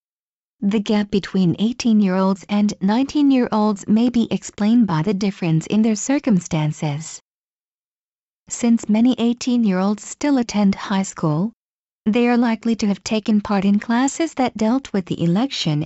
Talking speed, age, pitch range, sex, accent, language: 135 wpm, 40-59, 185-235 Hz, female, American, English